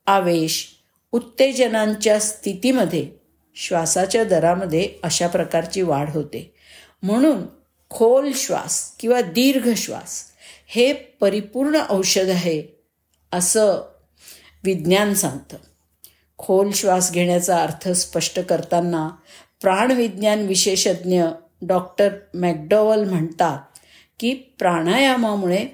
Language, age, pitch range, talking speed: Marathi, 50-69, 165-215 Hz, 80 wpm